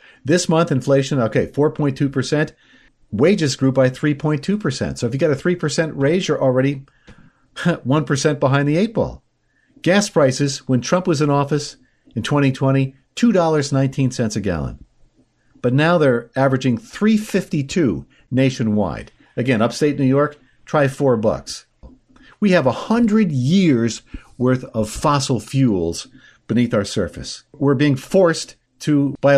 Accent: American